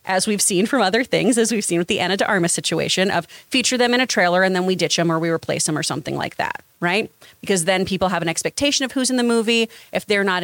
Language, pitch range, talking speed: English, 180-230 Hz, 280 wpm